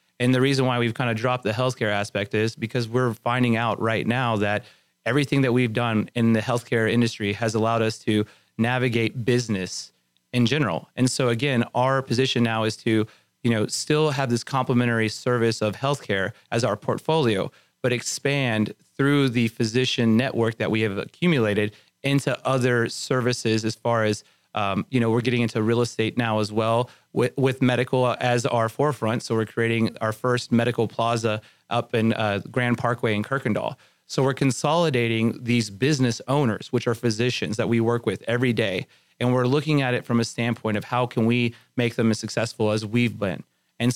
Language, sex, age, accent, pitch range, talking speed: English, male, 30-49, American, 110-125 Hz, 185 wpm